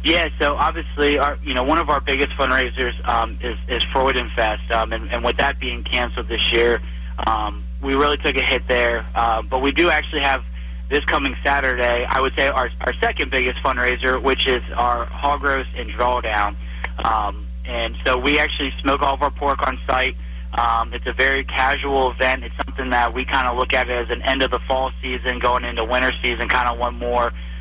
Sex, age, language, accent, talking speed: male, 30-49, English, American, 215 wpm